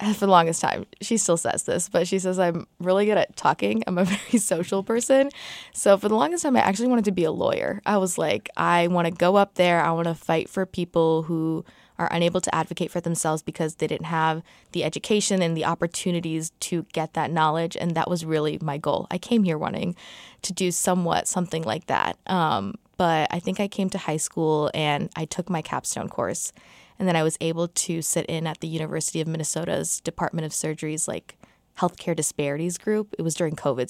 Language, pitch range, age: English, 155-185 Hz, 20-39